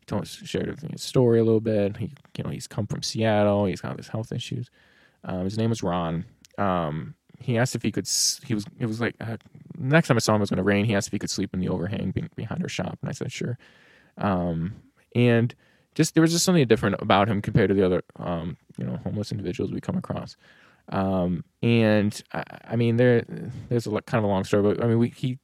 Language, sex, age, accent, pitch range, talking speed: English, male, 20-39, American, 95-125 Hz, 245 wpm